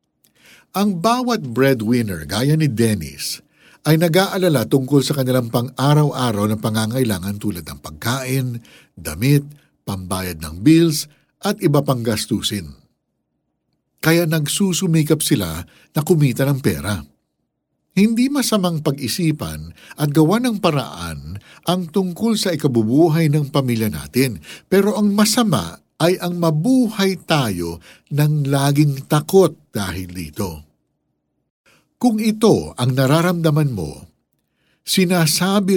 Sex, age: male, 60-79